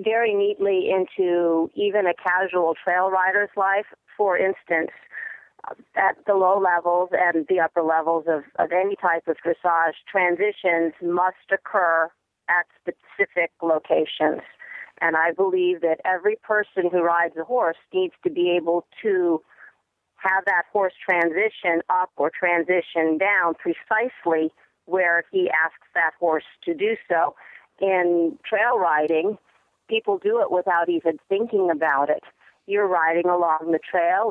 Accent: American